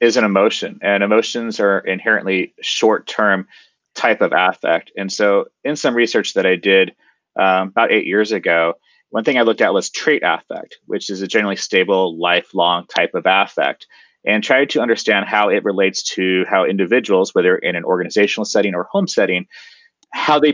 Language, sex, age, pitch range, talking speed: English, male, 30-49, 100-150 Hz, 180 wpm